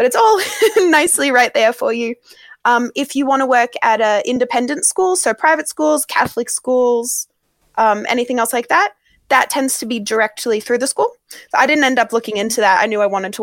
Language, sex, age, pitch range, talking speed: English, female, 20-39, 215-280 Hz, 220 wpm